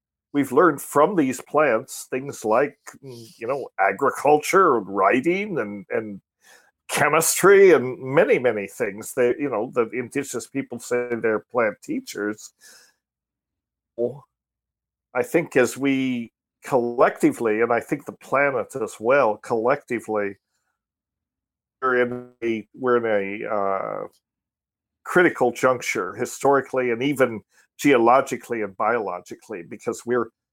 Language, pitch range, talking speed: English, 115-140 Hz, 115 wpm